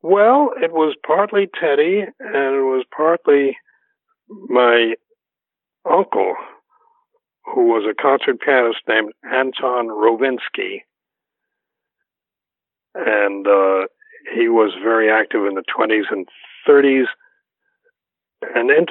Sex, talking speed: male, 100 wpm